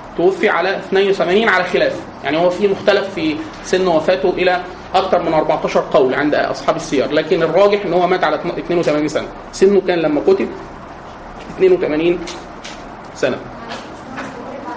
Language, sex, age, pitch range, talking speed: Arabic, male, 30-49, 170-210 Hz, 140 wpm